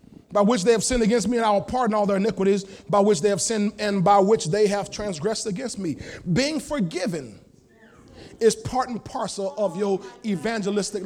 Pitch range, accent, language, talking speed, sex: 205-285 Hz, American, English, 195 wpm, male